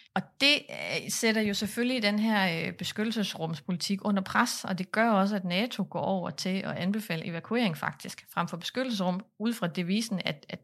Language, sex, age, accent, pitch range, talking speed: Danish, female, 30-49, native, 175-210 Hz, 175 wpm